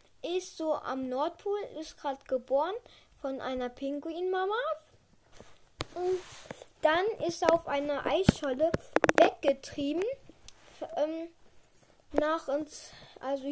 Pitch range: 275-340 Hz